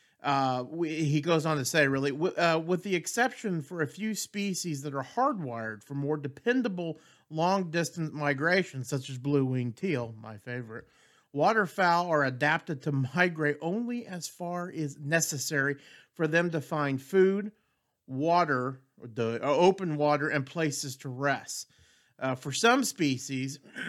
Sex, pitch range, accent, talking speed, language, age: male, 140-175 Hz, American, 145 wpm, English, 40-59